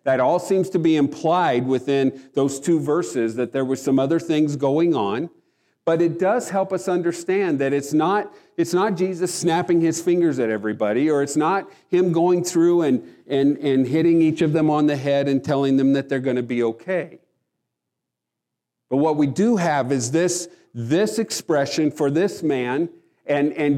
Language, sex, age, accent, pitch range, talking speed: English, male, 50-69, American, 130-170 Hz, 180 wpm